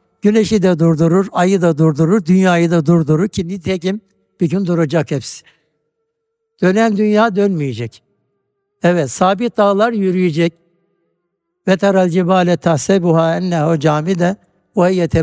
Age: 60-79